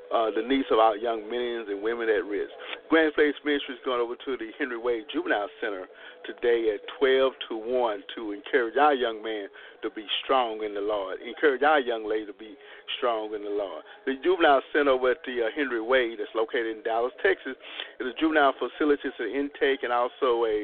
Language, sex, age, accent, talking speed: English, male, 50-69, American, 210 wpm